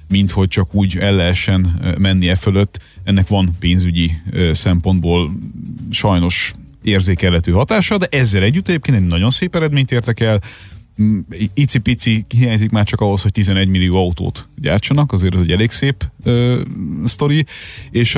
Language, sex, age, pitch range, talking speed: Hungarian, male, 30-49, 95-110 Hz, 150 wpm